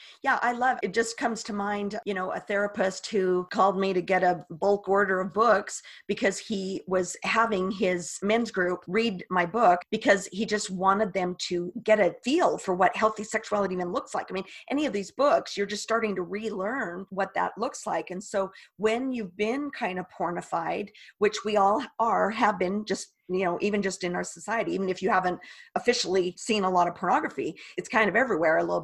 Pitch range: 185-230 Hz